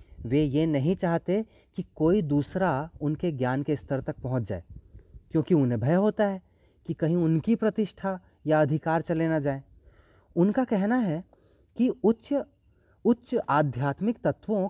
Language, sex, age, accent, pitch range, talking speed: Hindi, male, 30-49, native, 100-170 Hz, 145 wpm